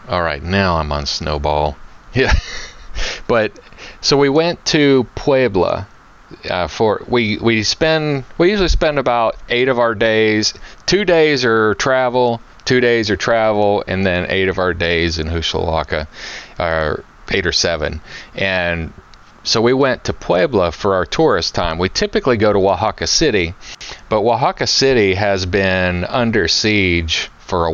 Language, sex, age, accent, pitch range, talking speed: English, male, 30-49, American, 85-110 Hz, 155 wpm